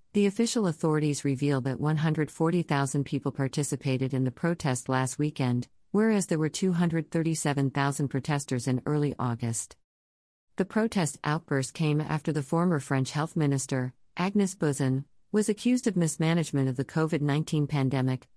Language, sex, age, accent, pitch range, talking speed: English, female, 40-59, American, 130-165 Hz, 135 wpm